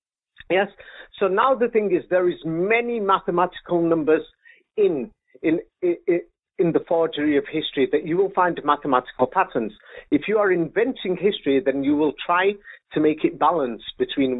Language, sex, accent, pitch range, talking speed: English, male, British, 140-200 Hz, 165 wpm